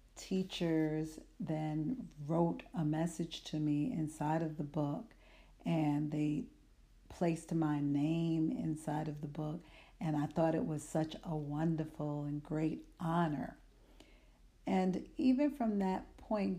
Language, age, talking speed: English, 50-69, 130 wpm